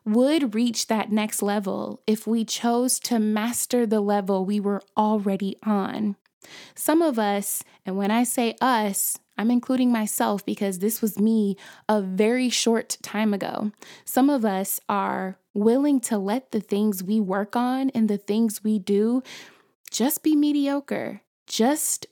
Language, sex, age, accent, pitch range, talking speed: English, female, 20-39, American, 205-240 Hz, 155 wpm